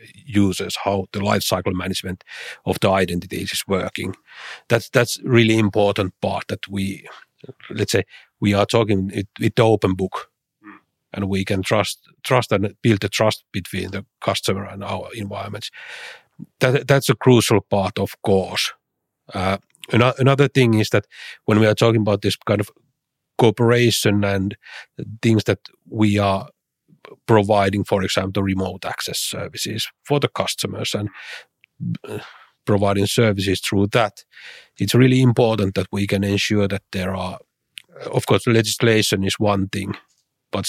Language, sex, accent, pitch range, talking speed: English, male, Finnish, 100-110 Hz, 145 wpm